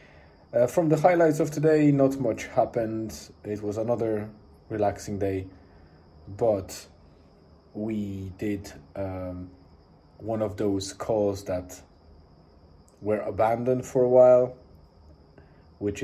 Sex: male